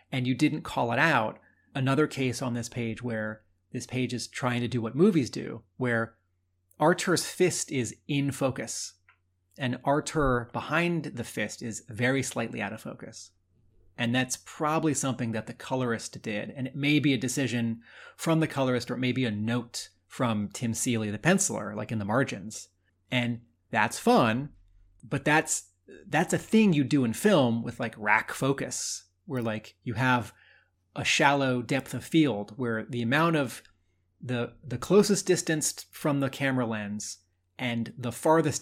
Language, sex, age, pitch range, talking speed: English, male, 30-49, 110-140 Hz, 170 wpm